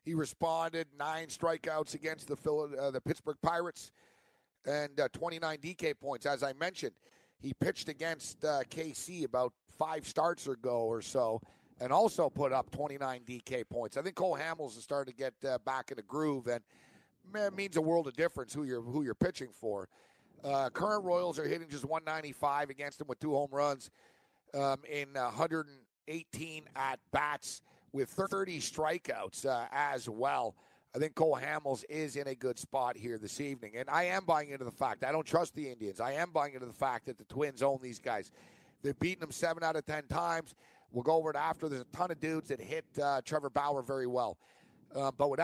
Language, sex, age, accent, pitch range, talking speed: English, male, 50-69, American, 130-160 Hz, 210 wpm